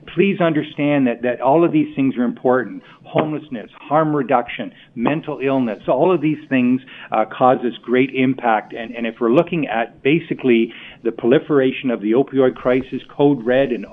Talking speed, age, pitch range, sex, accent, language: 170 wpm, 50-69, 120-145 Hz, male, American, English